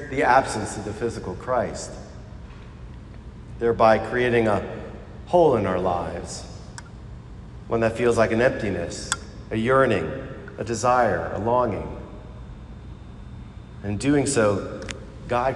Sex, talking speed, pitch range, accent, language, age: male, 110 wpm, 105-120 Hz, American, English, 40-59